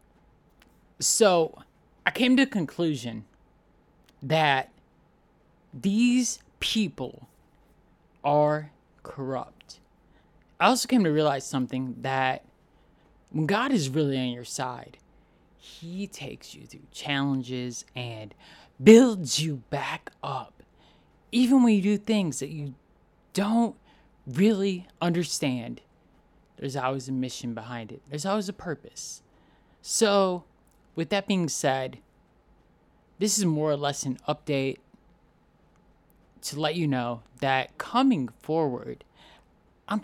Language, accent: English, American